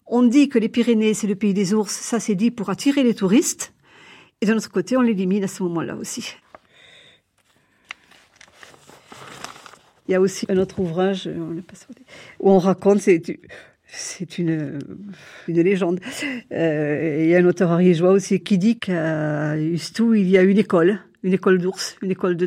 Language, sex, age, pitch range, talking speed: French, female, 50-69, 165-200 Hz, 170 wpm